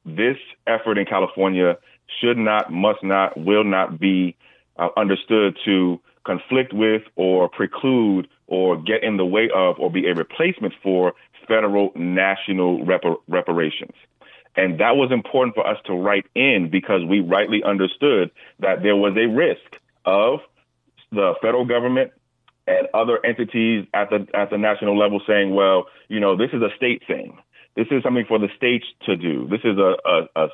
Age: 30-49